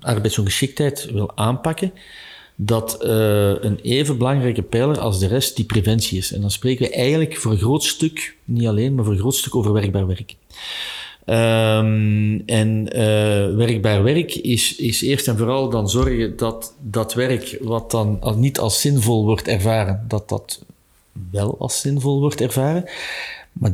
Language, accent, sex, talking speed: Dutch, Dutch, male, 160 wpm